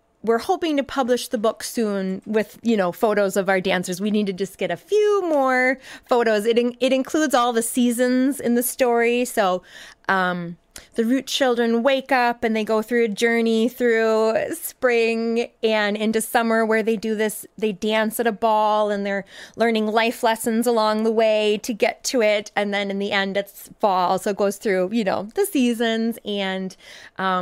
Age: 20-39